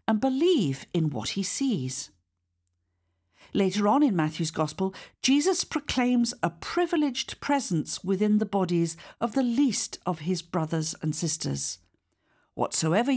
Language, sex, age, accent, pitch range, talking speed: English, female, 50-69, British, 155-255 Hz, 130 wpm